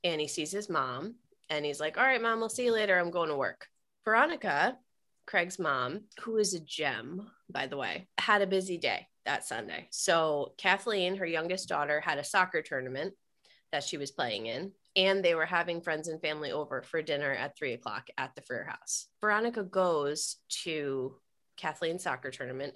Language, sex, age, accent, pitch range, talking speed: English, female, 20-39, American, 150-200 Hz, 190 wpm